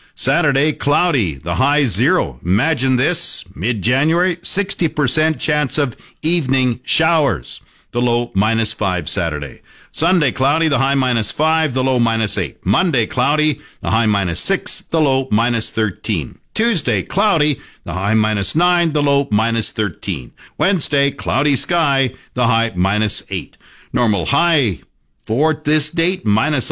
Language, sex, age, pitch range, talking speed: English, male, 50-69, 110-150 Hz, 135 wpm